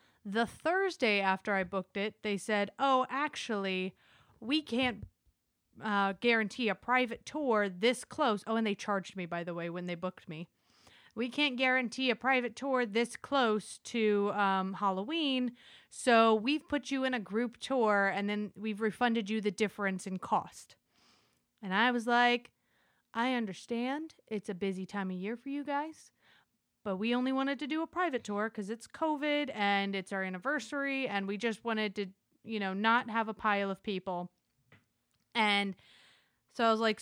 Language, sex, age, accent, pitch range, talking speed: English, female, 30-49, American, 200-250 Hz, 175 wpm